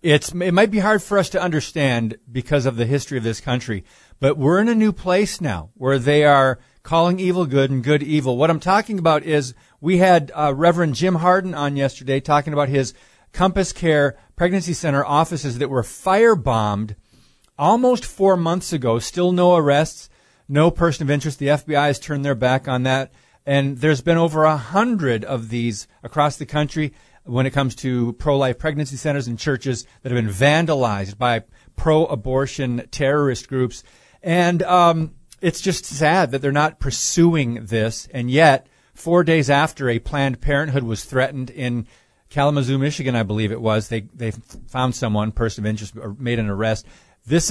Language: English